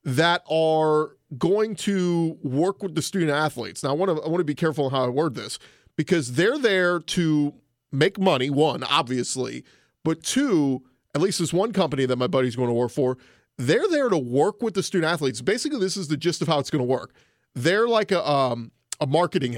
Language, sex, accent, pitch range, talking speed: English, male, American, 145-190 Hz, 210 wpm